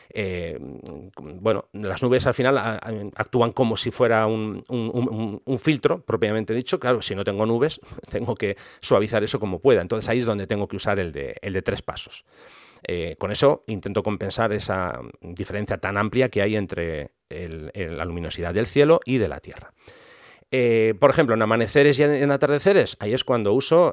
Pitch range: 100-130 Hz